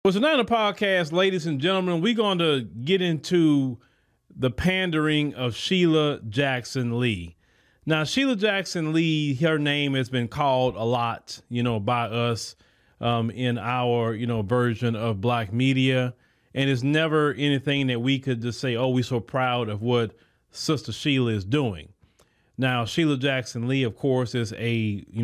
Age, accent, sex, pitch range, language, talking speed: 30-49, American, male, 115-145 Hz, English, 170 wpm